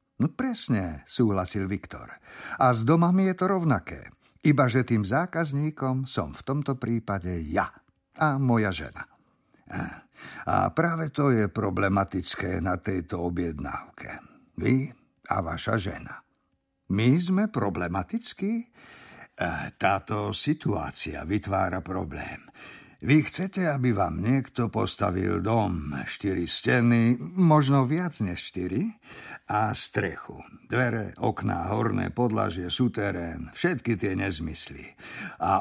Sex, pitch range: male, 95-145 Hz